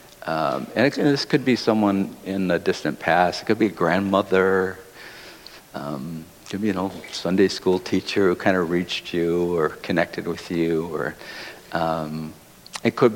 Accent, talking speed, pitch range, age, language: American, 180 wpm, 95-125 Hz, 60-79, English